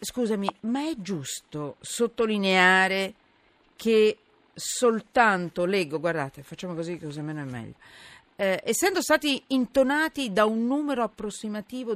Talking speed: 115 wpm